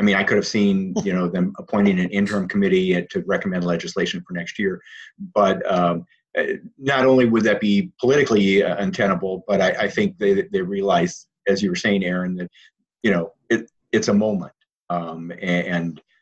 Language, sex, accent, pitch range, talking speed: English, male, American, 90-135 Hz, 185 wpm